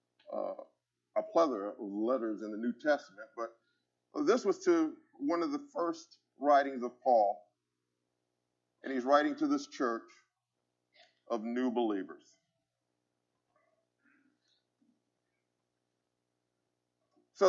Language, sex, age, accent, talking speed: English, male, 50-69, American, 105 wpm